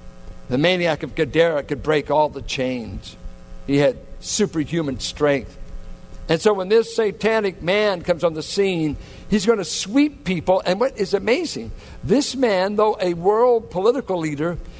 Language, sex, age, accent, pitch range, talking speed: English, male, 60-79, American, 155-215 Hz, 160 wpm